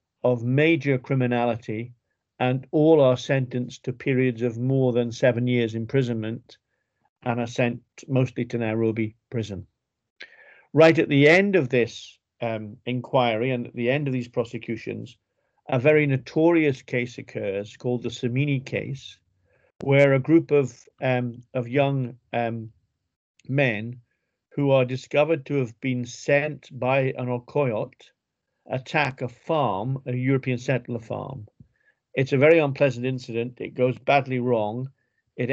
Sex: male